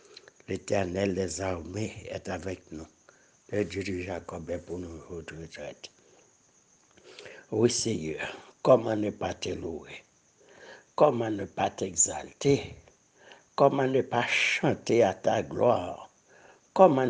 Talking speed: 115 wpm